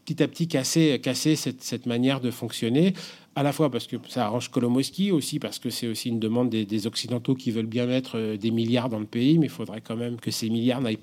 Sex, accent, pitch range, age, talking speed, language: male, French, 115-145 Hz, 40-59, 250 wpm, French